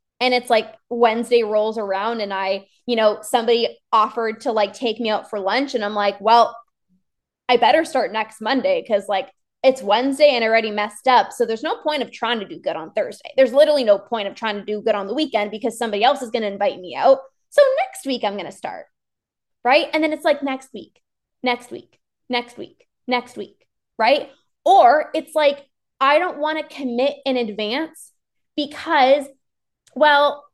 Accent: American